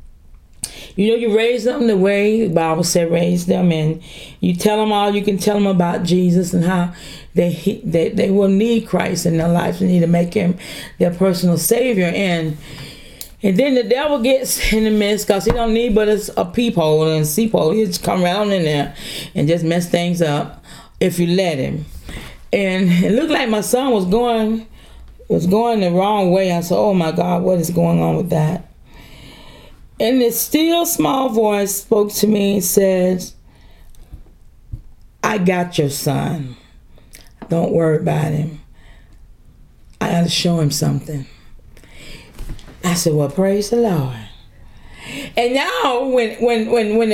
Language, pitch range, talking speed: English, 170-220 Hz, 170 wpm